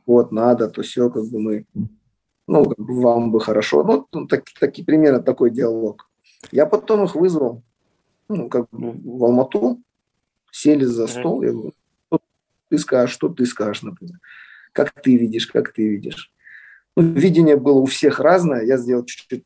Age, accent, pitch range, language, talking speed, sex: 20-39, native, 120-150 Hz, Russian, 170 wpm, male